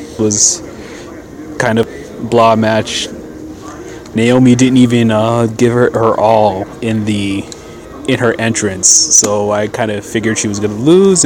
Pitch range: 110-125 Hz